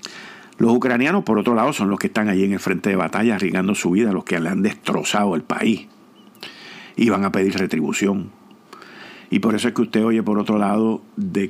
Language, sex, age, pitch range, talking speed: Spanish, male, 50-69, 100-120 Hz, 215 wpm